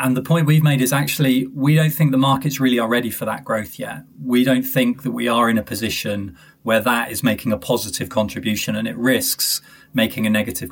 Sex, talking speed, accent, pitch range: male, 230 wpm, British, 120-145 Hz